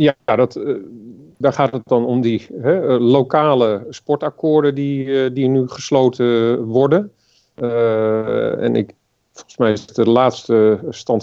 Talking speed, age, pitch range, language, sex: 125 wpm, 40-59, 110-140 Hz, Dutch, male